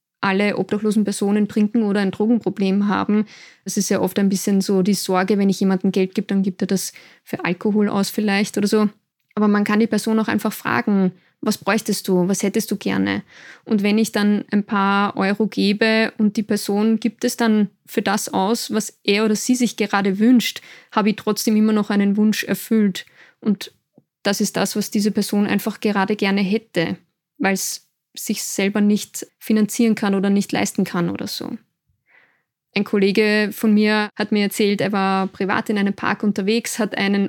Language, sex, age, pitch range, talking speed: German, female, 20-39, 200-220 Hz, 190 wpm